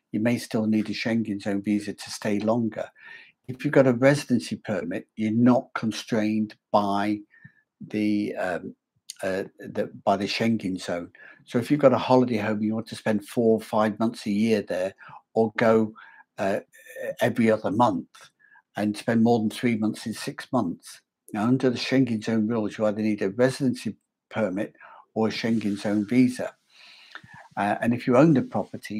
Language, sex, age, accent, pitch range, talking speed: English, male, 60-79, British, 105-120 Hz, 180 wpm